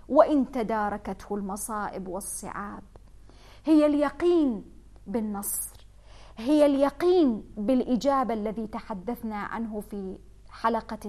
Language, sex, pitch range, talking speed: English, female, 200-260 Hz, 80 wpm